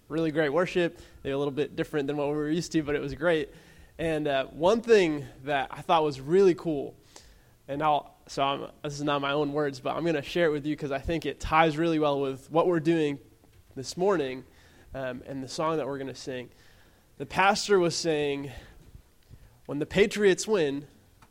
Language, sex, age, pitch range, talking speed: Arabic, male, 20-39, 140-175 Hz, 215 wpm